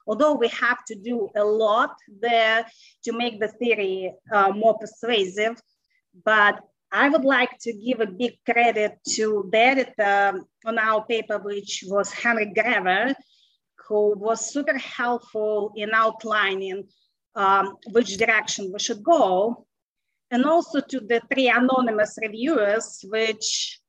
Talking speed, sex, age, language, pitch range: 135 wpm, female, 30-49, English, 210-250 Hz